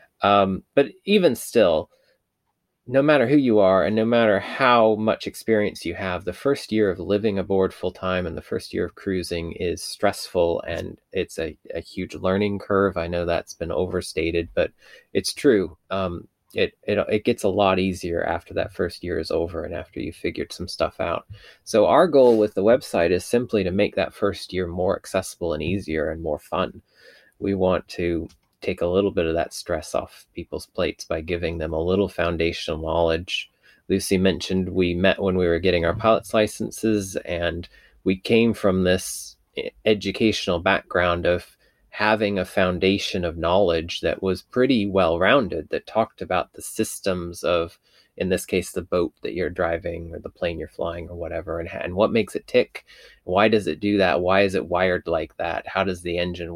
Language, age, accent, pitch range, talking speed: English, 20-39, American, 85-105 Hz, 190 wpm